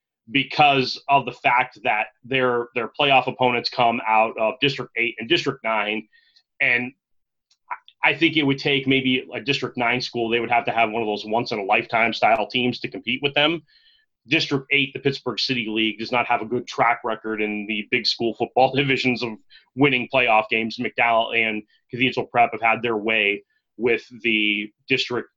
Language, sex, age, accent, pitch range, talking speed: English, male, 30-49, American, 115-140 Hz, 180 wpm